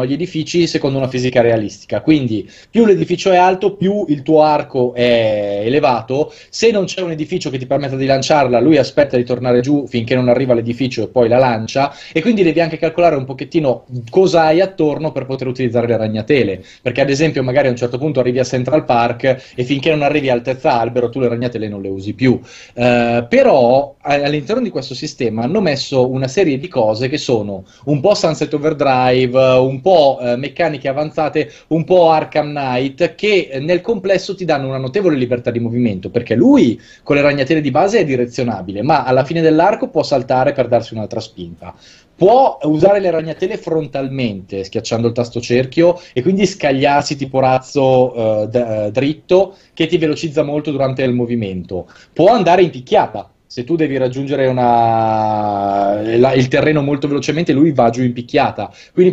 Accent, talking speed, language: native, 180 wpm, Italian